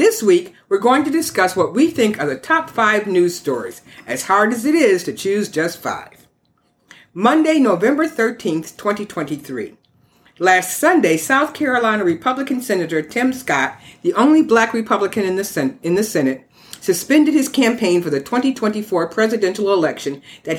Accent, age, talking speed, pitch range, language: American, 50-69, 155 wpm, 160-255 Hz, English